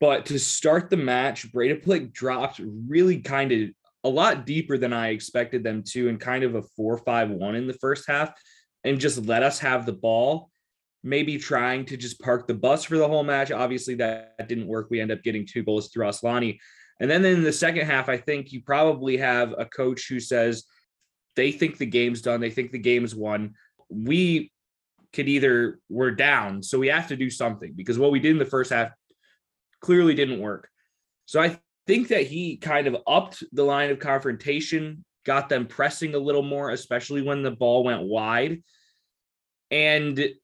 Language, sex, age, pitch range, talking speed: English, male, 20-39, 120-145 Hz, 195 wpm